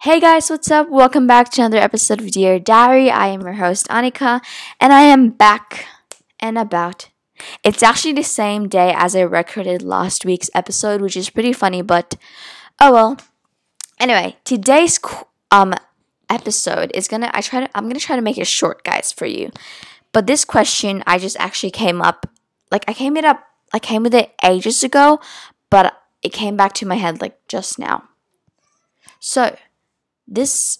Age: 10-29